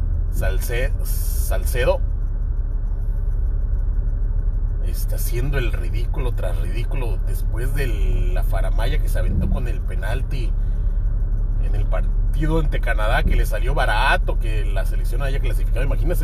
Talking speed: 120 wpm